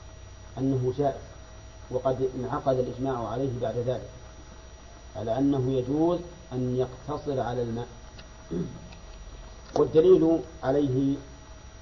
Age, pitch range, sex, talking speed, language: 40-59, 110-140 Hz, male, 85 wpm, Arabic